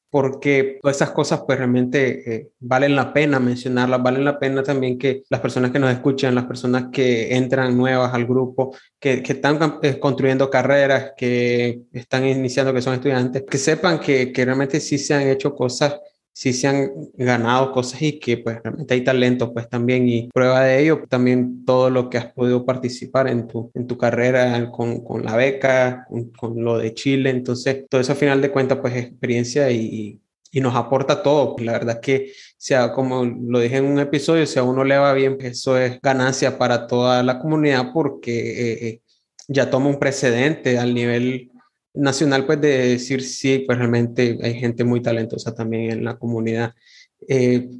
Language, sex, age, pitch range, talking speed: Spanish, male, 20-39, 125-145 Hz, 190 wpm